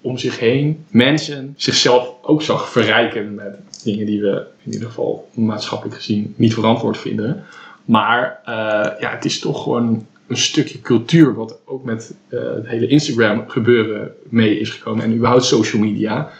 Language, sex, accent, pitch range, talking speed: Dutch, male, Dutch, 110-130 Hz, 165 wpm